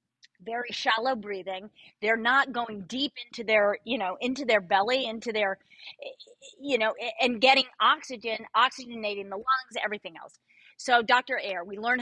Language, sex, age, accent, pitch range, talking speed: English, female, 30-49, American, 215-265 Hz, 155 wpm